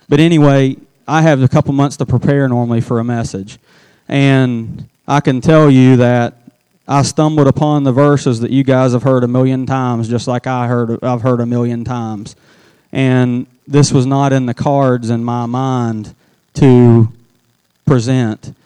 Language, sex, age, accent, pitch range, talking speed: English, male, 30-49, American, 120-140 Hz, 175 wpm